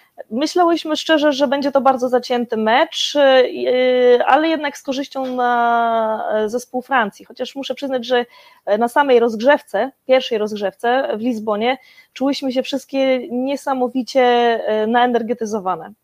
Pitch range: 220-250 Hz